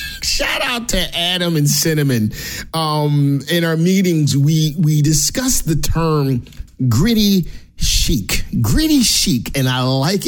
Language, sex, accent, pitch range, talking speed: English, male, American, 115-150 Hz, 130 wpm